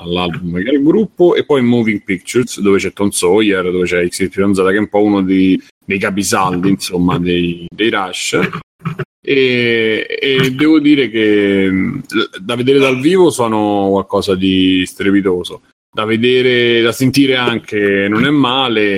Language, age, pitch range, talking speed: Italian, 30-49, 95-125 Hz, 150 wpm